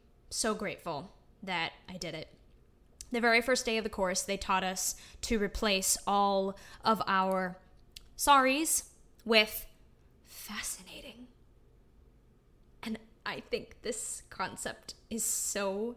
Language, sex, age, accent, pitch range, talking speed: English, female, 10-29, American, 200-260 Hz, 115 wpm